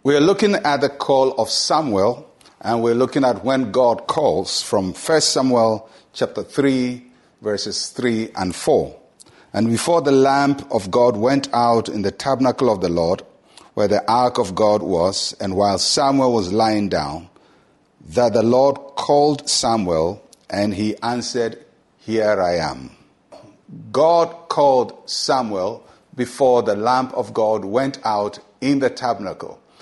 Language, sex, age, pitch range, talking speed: English, male, 50-69, 105-140 Hz, 145 wpm